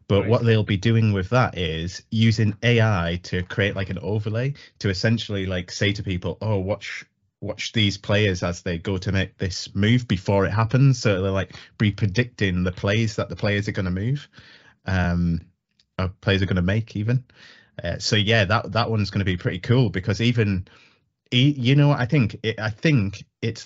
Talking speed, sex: 195 wpm, male